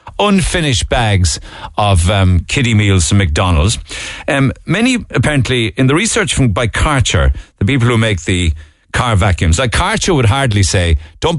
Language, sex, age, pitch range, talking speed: English, male, 60-79, 90-135 Hz, 160 wpm